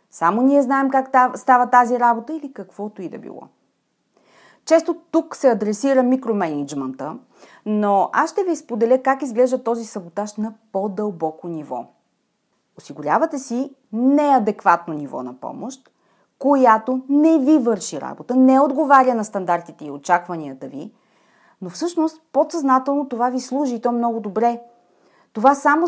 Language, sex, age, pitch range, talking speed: Bulgarian, female, 30-49, 195-270 Hz, 135 wpm